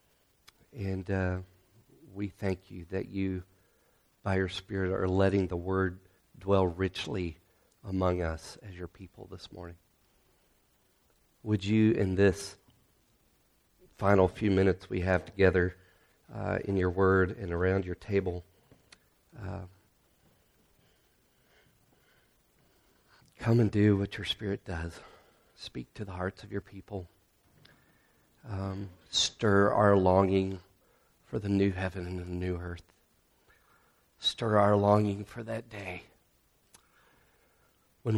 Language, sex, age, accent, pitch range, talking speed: English, male, 40-59, American, 90-105 Hz, 120 wpm